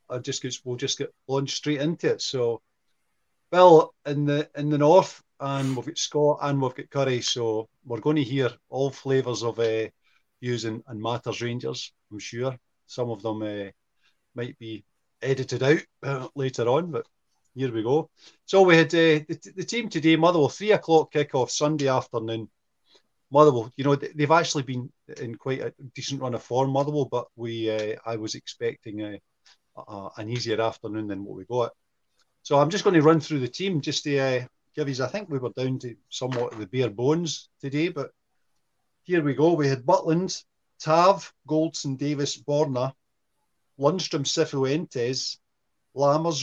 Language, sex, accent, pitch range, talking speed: English, male, British, 120-150 Hz, 180 wpm